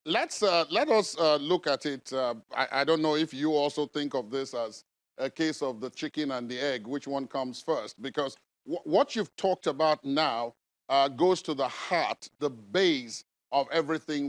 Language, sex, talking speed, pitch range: English, male, 210 wpm, 135-170 Hz